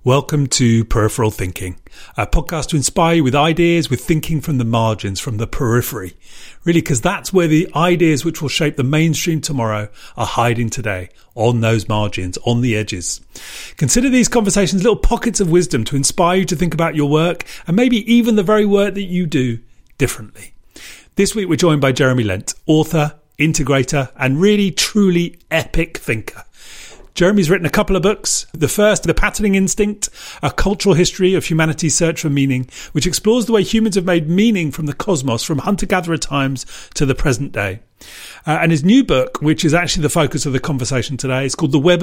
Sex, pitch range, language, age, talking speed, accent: male, 130-180 Hz, English, 30-49, 190 wpm, British